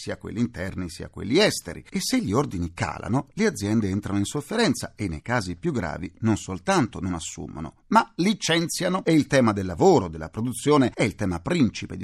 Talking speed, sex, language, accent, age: 195 wpm, male, Italian, native, 40-59